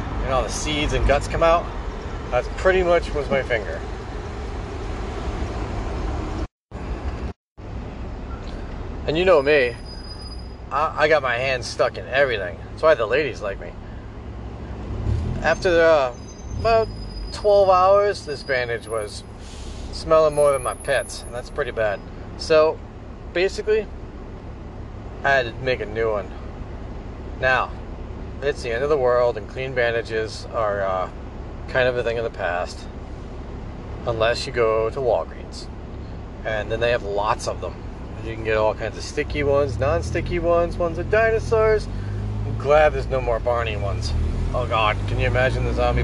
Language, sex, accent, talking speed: English, male, American, 150 wpm